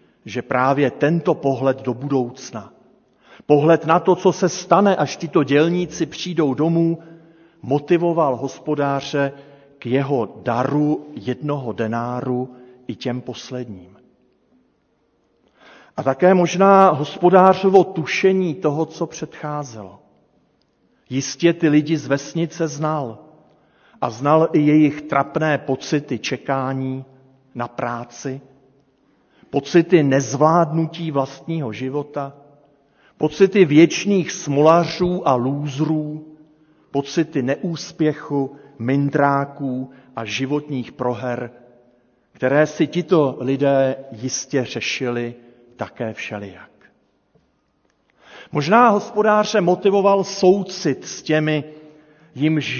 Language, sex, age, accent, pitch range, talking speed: Czech, male, 50-69, native, 130-165 Hz, 90 wpm